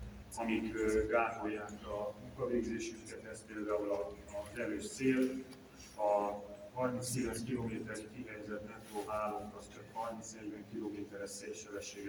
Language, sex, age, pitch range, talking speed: Hungarian, male, 30-49, 100-115 Hz, 100 wpm